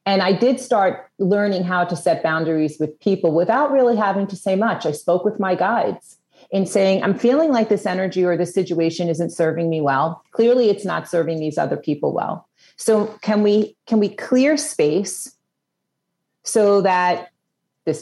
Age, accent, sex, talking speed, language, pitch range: 40-59, American, female, 180 wpm, English, 165-220 Hz